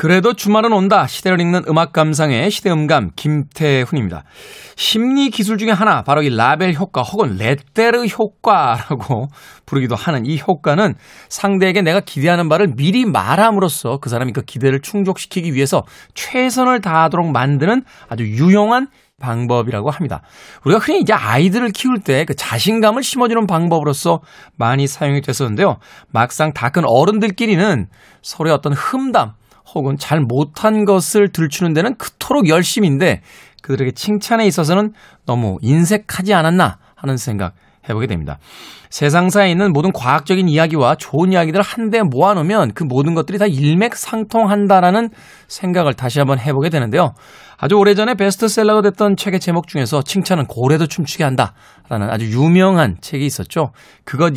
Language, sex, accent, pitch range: Korean, male, native, 140-205 Hz